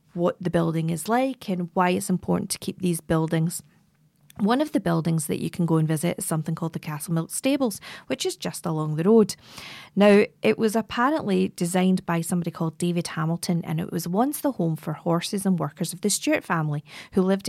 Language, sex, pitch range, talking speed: English, female, 170-205 Hz, 210 wpm